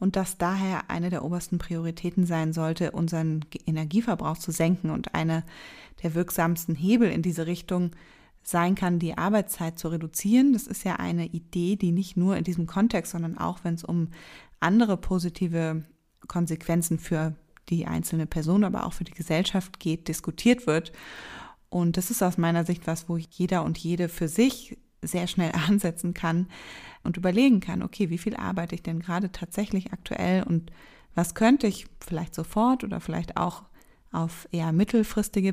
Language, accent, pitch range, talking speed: German, German, 165-195 Hz, 165 wpm